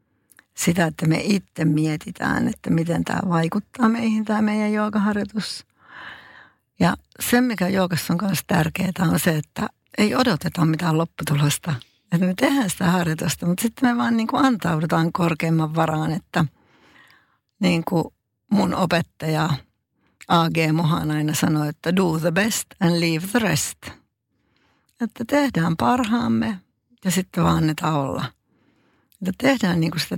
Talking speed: 140 wpm